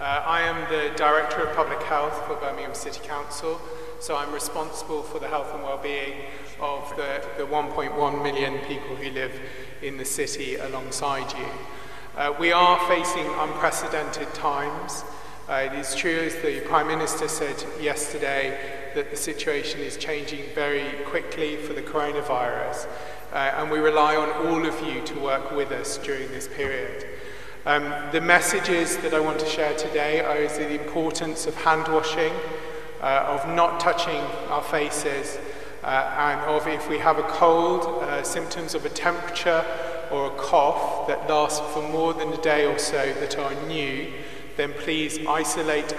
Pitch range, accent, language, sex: 145-165 Hz, British, English, male